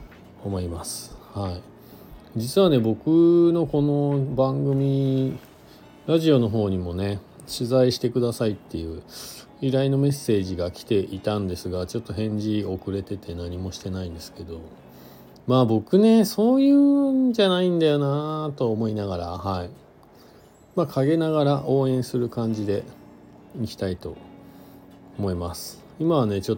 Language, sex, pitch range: Japanese, male, 95-135 Hz